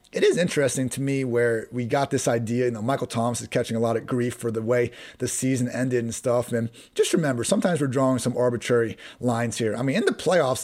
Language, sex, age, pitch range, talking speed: English, male, 30-49, 120-150 Hz, 245 wpm